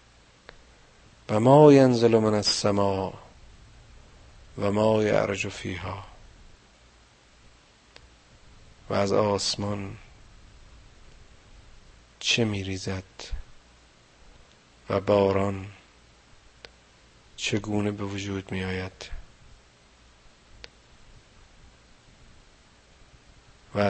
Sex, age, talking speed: male, 50-69, 50 wpm